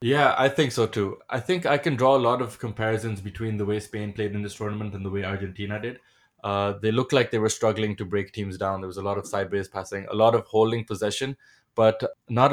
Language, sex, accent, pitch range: English, male, Indian, 105-120 Hz